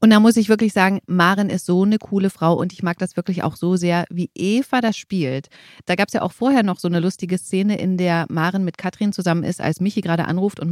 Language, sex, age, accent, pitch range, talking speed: German, female, 30-49, German, 170-205 Hz, 265 wpm